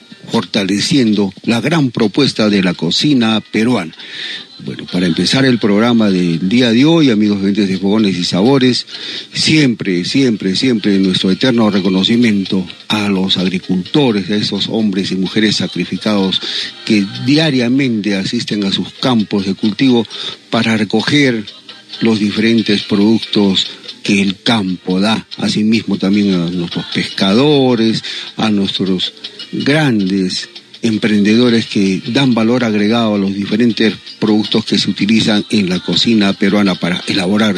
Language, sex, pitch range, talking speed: Spanish, male, 100-120 Hz, 130 wpm